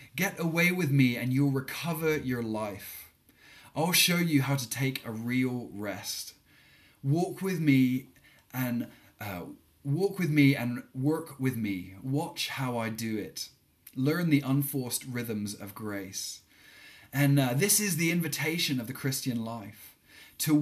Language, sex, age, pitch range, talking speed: English, male, 20-39, 125-155 Hz, 150 wpm